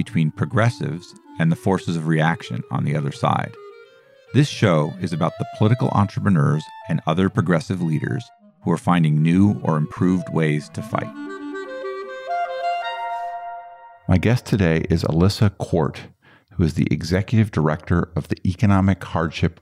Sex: male